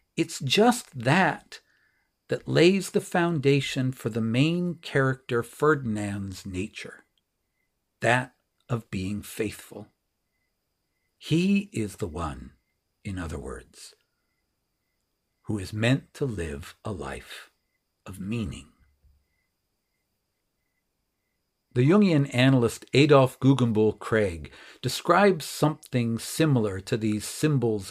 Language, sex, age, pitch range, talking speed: English, male, 60-79, 100-145 Hz, 95 wpm